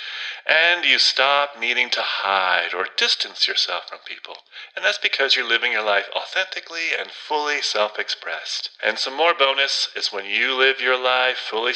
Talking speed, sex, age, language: 170 wpm, male, 40-59, English